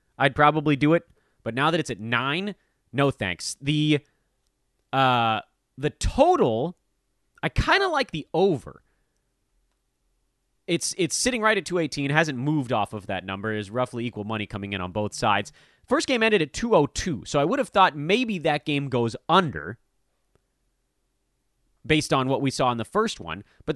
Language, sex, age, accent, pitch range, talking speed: English, male, 30-49, American, 125-180 Hz, 175 wpm